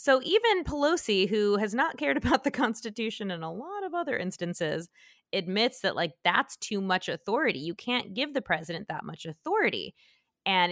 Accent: American